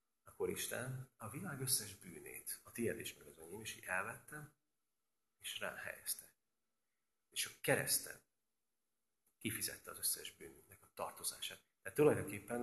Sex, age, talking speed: male, 40-59, 125 wpm